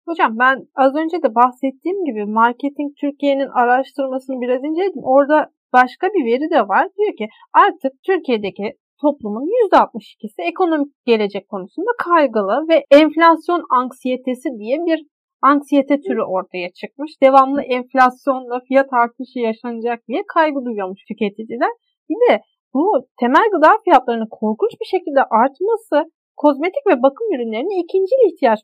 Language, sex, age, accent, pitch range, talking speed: Turkish, female, 40-59, native, 245-330 Hz, 130 wpm